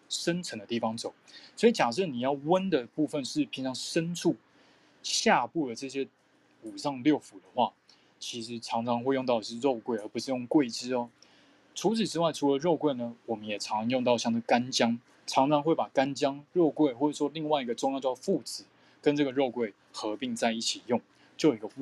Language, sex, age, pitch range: Chinese, male, 20-39, 120-155 Hz